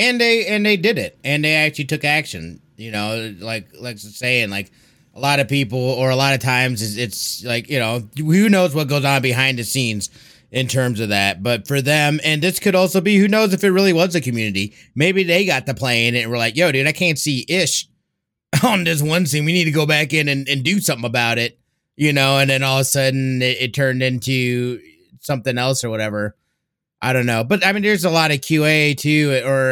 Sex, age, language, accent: male, 30-49, English, American